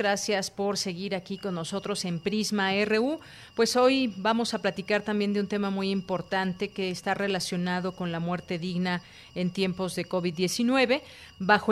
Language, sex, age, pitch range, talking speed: Spanish, female, 40-59, 180-215 Hz, 165 wpm